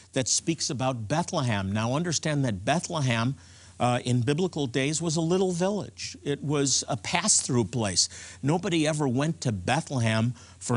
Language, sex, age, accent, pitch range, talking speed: English, male, 50-69, American, 105-145 Hz, 150 wpm